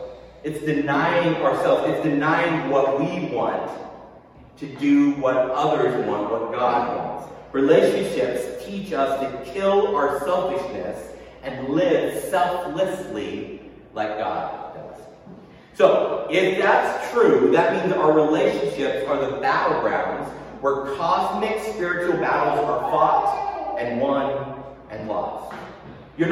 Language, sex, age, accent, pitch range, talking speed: English, male, 30-49, American, 145-185 Hz, 115 wpm